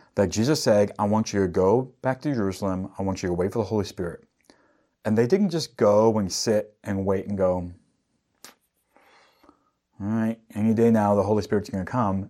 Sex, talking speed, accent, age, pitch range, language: male, 205 wpm, American, 30-49, 90-110 Hz, English